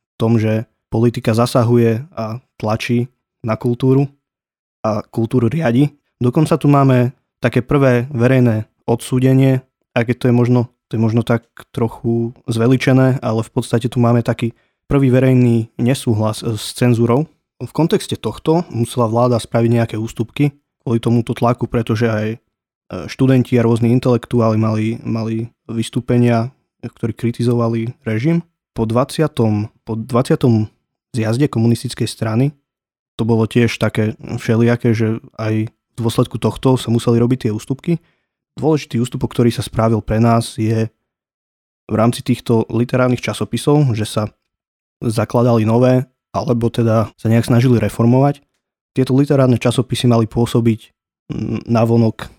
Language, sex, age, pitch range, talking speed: Slovak, male, 20-39, 115-125 Hz, 130 wpm